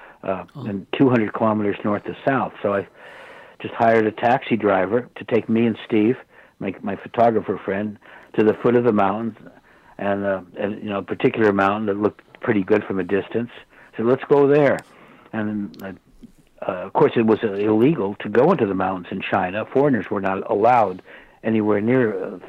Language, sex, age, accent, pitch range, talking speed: English, male, 60-79, American, 105-120 Hz, 185 wpm